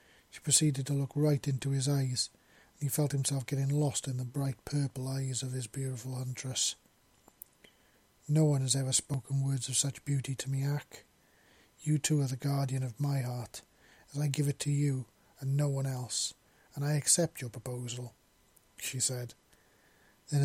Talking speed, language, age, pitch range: 180 wpm, English, 40-59, 130-145 Hz